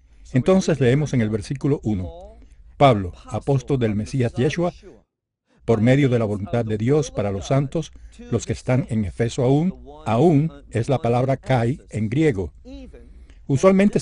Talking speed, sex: 150 wpm, male